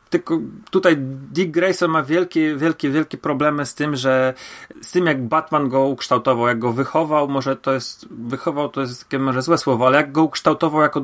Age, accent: 30-49, native